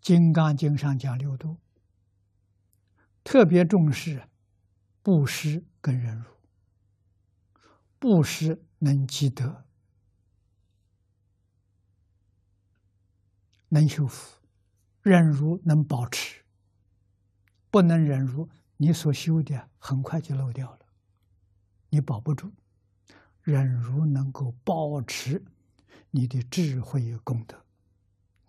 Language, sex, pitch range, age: Chinese, male, 100-140 Hz, 60-79